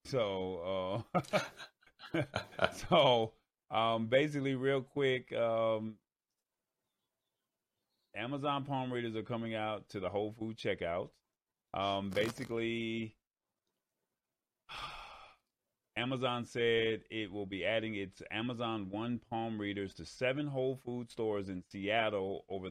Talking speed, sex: 105 wpm, male